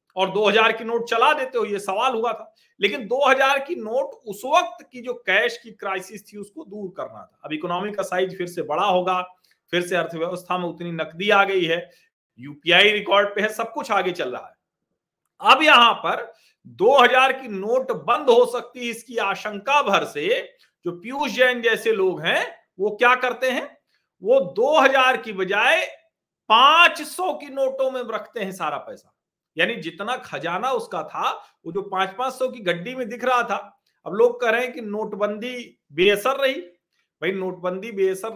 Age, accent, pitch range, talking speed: 40-59, native, 185-265 Hz, 185 wpm